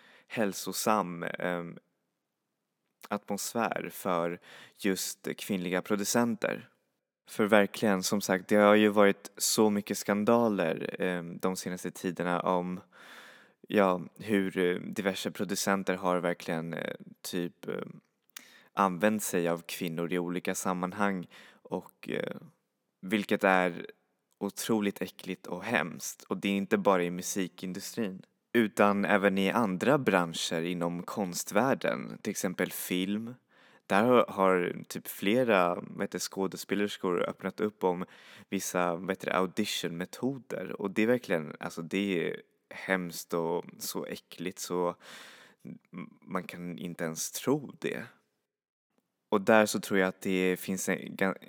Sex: male